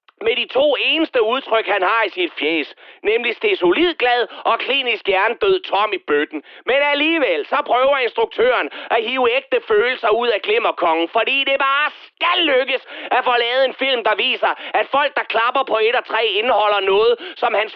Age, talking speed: 30-49, 190 wpm